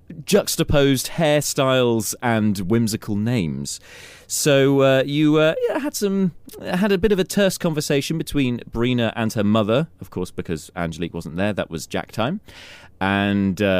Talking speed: 150 wpm